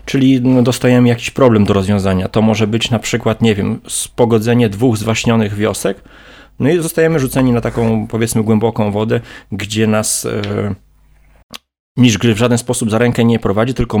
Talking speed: 165 wpm